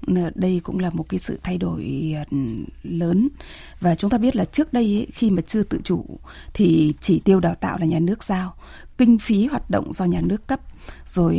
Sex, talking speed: female, 205 wpm